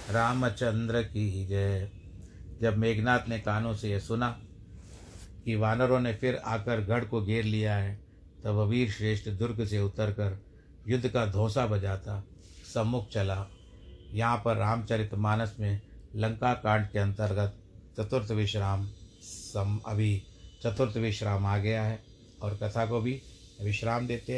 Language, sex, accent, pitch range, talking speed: Hindi, male, native, 100-115 Hz, 140 wpm